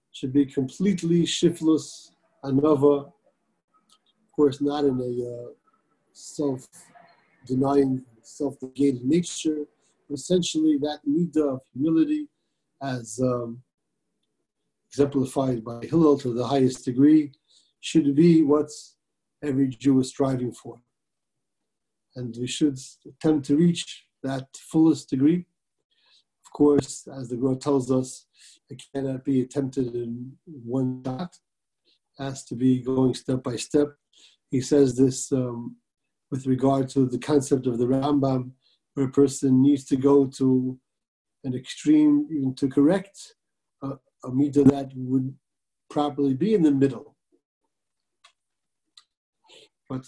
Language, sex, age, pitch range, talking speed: English, male, 50-69, 130-150 Hz, 120 wpm